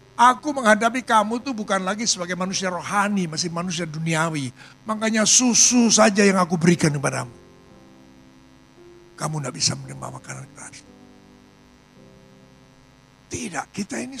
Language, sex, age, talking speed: Indonesian, male, 60-79, 125 wpm